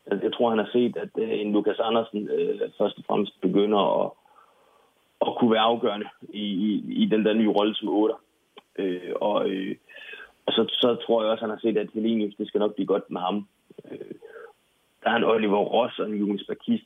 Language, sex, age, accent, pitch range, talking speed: Danish, male, 30-49, native, 100-115 Hz, 215 wpm